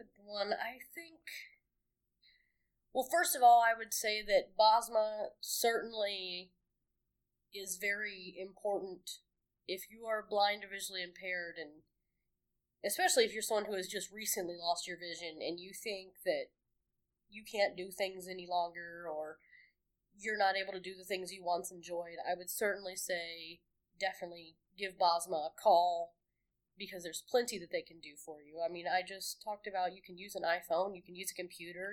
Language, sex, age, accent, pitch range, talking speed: English, female, 20-39, American, 175-205 Hz, 170 wpm